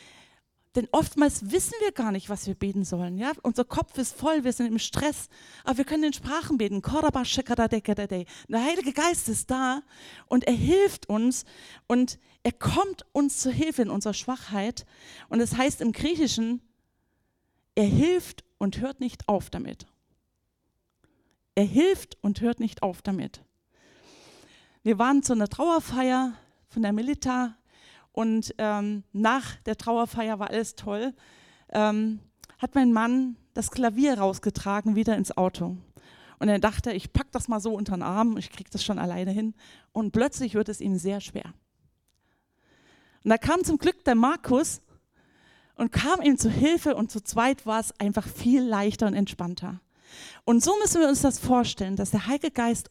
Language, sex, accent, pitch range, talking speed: German, female, German, 205-265 Hz, 165 wpm